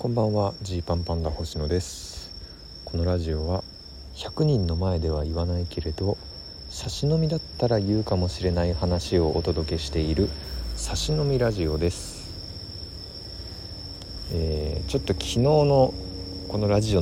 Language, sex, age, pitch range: Japanese, male, 50-69, 80-110 Hz